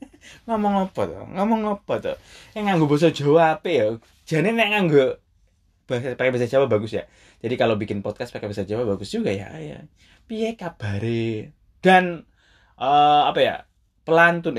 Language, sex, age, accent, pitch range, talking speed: Indonesian, male, 20-39, native, 105-160 Hz, 165 wpm